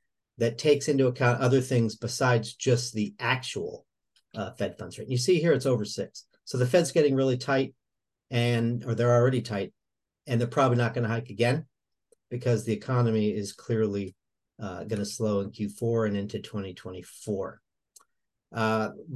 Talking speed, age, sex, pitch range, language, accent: 160 wpm, 50-69, male, 115-145 Hz, English, American